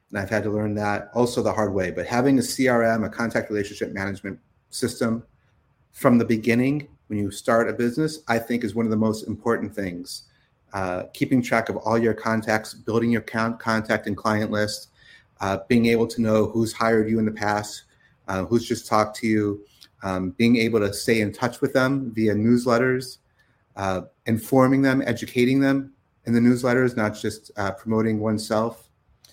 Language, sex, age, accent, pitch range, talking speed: English, male, 30-49, American, 105-115 Hz, 185 wpm